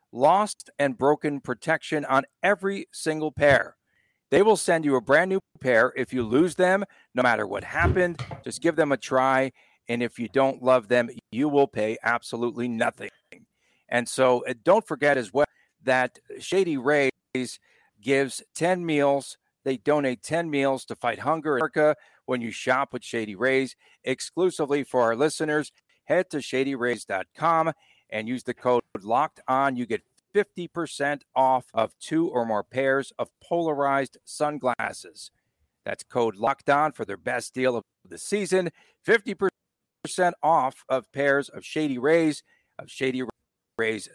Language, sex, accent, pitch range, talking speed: English, male, American, 125-160 Hz, 155 wpm